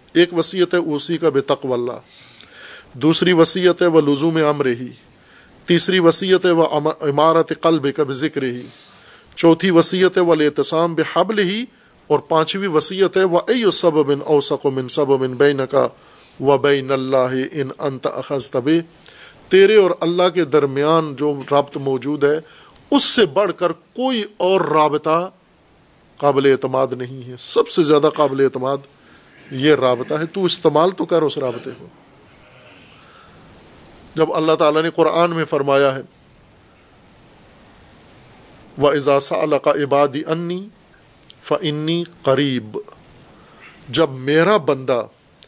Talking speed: 130 wpm